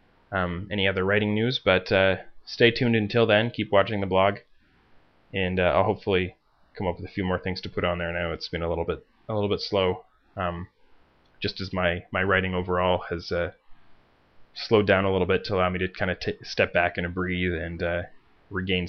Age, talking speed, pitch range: 20-39, 220 wpm, 85-100 Hz